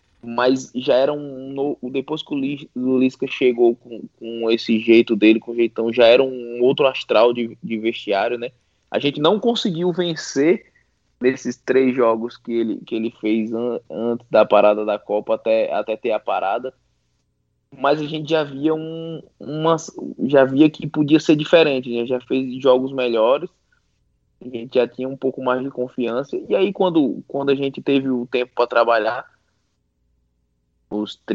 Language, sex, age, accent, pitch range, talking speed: Portuguese, male, 20-39, Brazilian, 115-135 Hz, 170 wpm